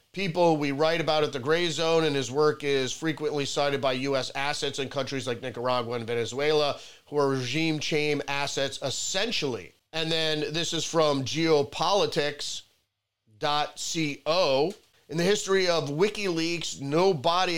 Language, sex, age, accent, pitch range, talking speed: English, male, 40-59, American, 135-170 Hz, 140 wpm